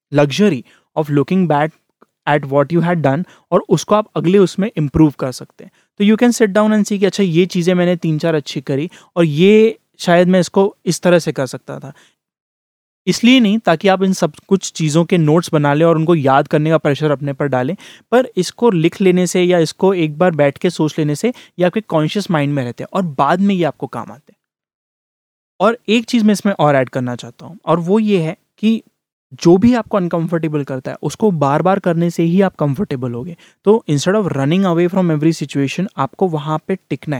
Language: English